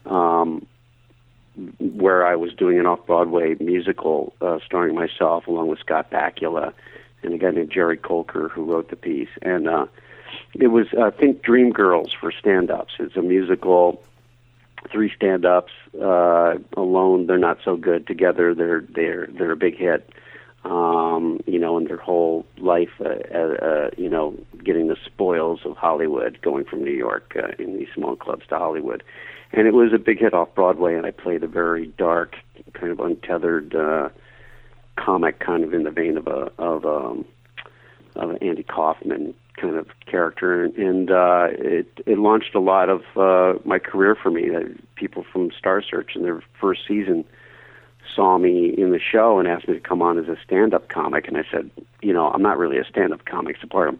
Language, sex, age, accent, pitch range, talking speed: English, male, 50-69, American, 85-120 Hz, 185 wpm